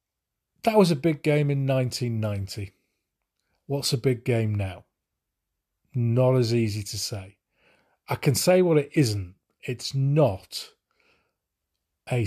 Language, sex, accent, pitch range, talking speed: English, male, British, 105-140 Hz, 125 wpm